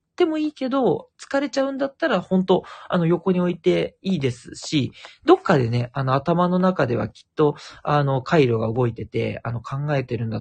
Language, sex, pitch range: Japanese, male, 130-190 Hz